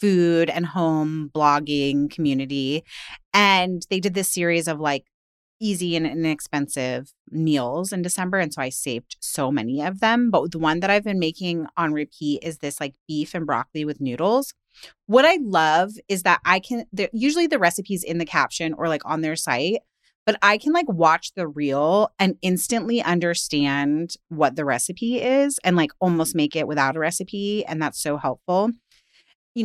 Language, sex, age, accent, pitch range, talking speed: English, female, 30-49, American, 150-205 Hz, 180 wpm